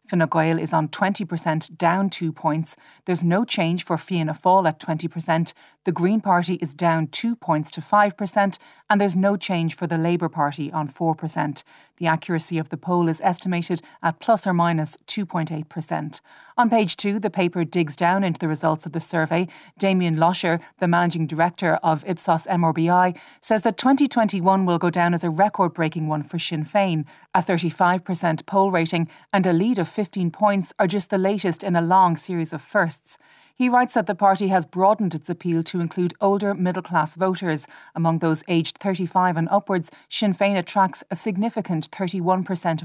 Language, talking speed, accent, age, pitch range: English, 180 wpm, Irish, 30-49, 165-190 Hz